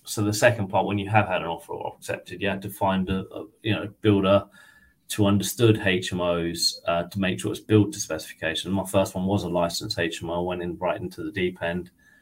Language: English